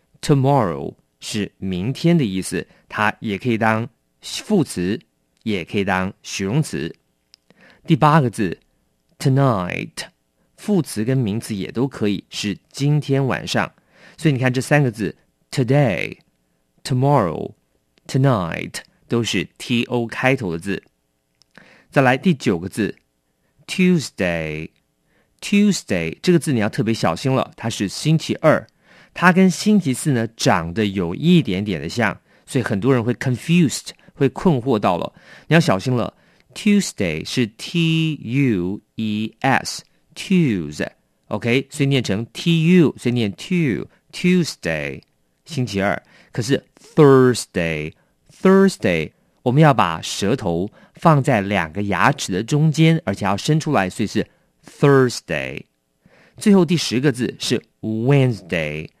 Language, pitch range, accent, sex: English, 100-155 Hz, Chinese, male